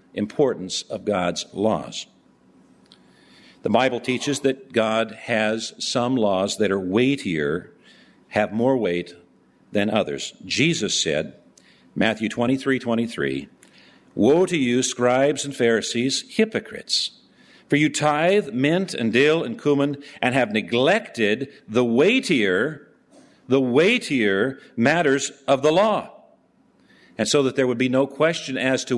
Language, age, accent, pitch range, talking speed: English, 50-69, American, 115-140 Hz, 125 wpm